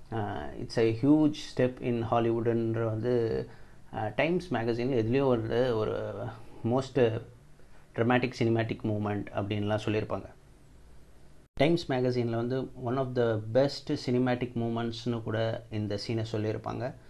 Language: Tamil